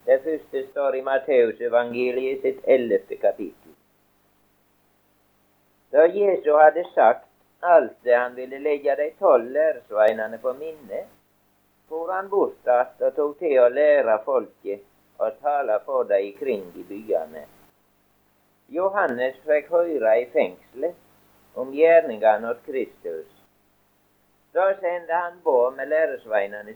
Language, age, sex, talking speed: English, 50-69, male, 125 wpm